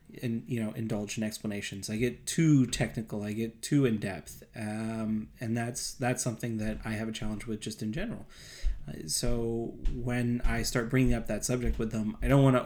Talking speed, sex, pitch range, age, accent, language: 210 wpm, male, 110-125 Hz, 30-49, American, English